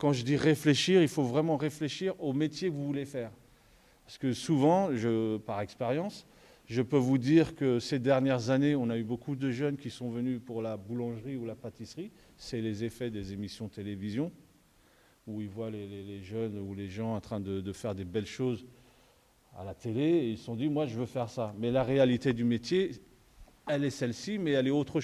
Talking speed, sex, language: 220 wpm, male, French